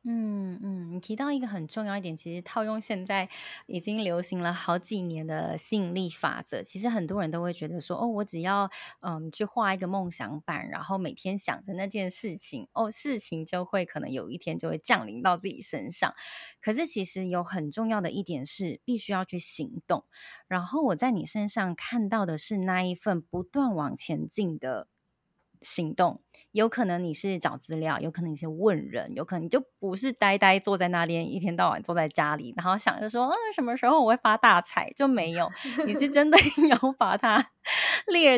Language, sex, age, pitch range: Chinese, female, 20-39, 175-235 Hz